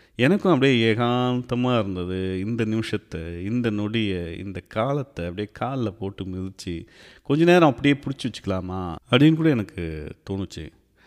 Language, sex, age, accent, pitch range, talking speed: Tamil, male, 30-49, native, 95-120 Hz, 125 wpm